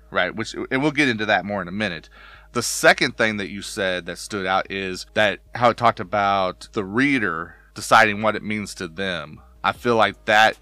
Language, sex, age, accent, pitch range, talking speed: English, male, 30-49, American, 95-115 Hz, 215 wpm